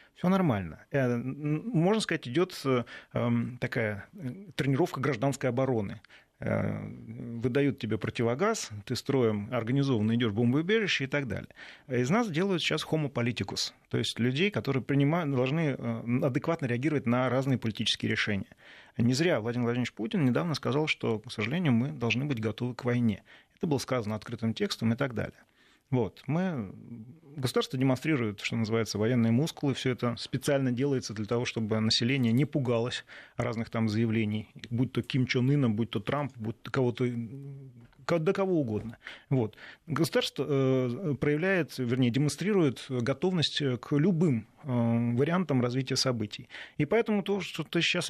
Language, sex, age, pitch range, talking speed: Russian, male, 30-49, 115-150 Hz, 140 wpm